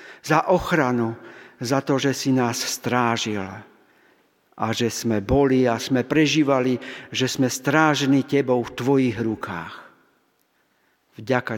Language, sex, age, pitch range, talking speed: Slovak, male, 50-69, 125-155 Hz, 120 wpm